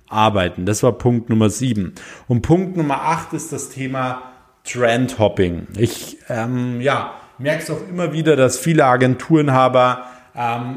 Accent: German